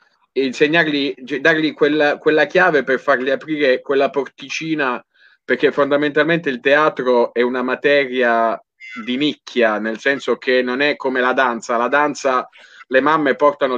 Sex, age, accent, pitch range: male, 30-49, native, 120-145 Hz